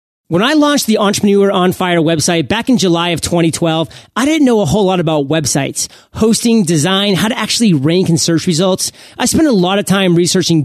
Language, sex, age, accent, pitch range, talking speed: English, male, 30-49, American, 165-215 Hz, 210 wpm